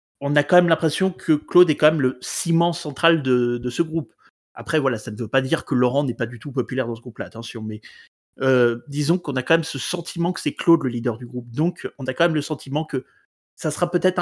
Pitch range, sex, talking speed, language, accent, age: 130-170 Hz, male, 260 wpm, French, French, 30-49